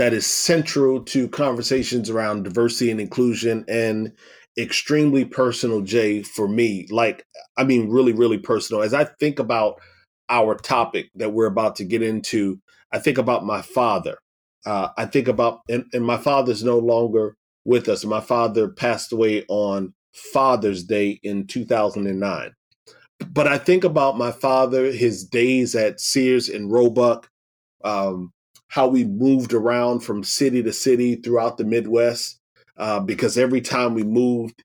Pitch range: 105-125 Hz